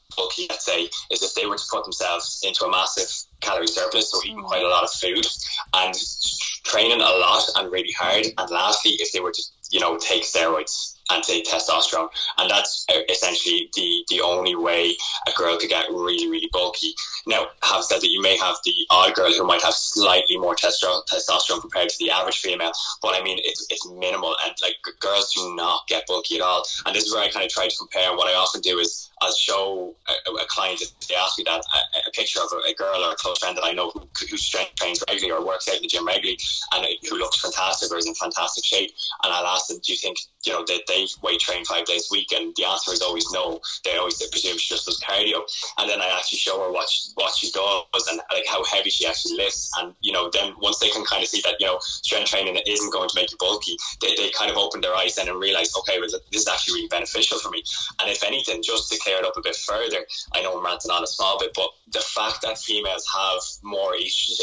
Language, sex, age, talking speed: English, male, 10-29, 250 wpm